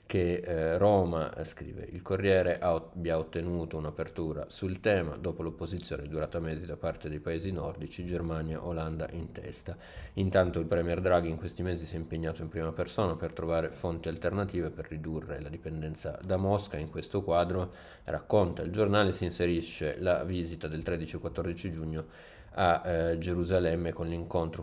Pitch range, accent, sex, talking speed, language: 80-90 Hz, native, male, 165 wpm, Italian